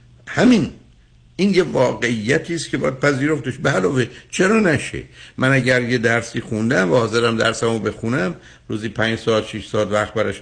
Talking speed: 150 wpm